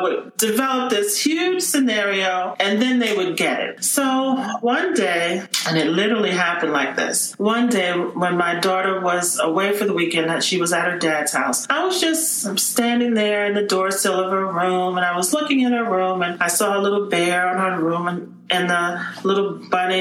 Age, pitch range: 40-59, 190-290 Hz